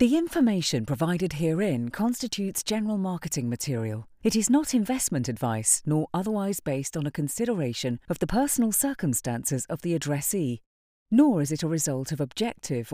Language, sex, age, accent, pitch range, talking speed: English, female, 40-59, British, 140-215 Hz, 155 wpm